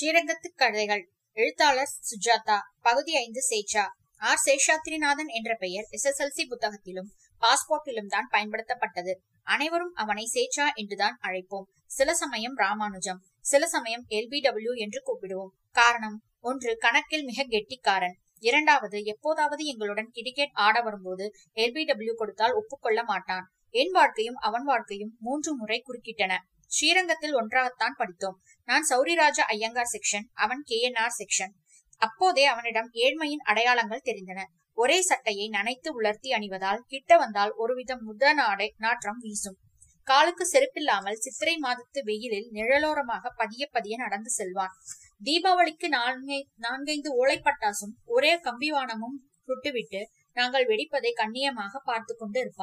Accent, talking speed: native, 100 wpm